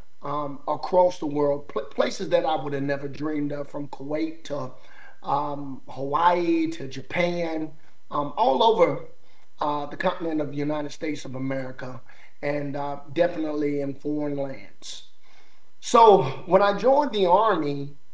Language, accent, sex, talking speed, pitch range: English, American, male, 145 wpm, 140-175 Hz